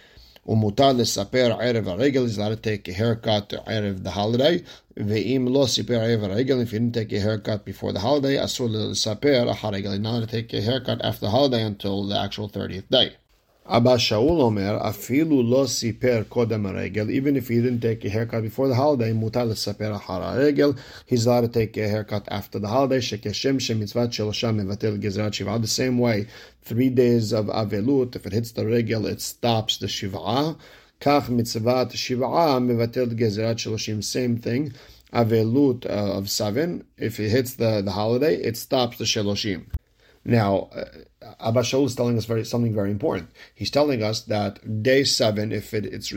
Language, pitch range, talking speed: English, 105-125 Hz, 180 wpm